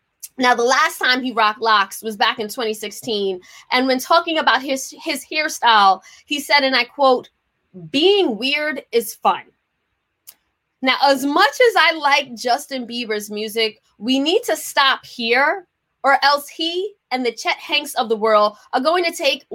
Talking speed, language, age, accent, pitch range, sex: 170 wpm, English, 20-39, American, 225-310 Hz, female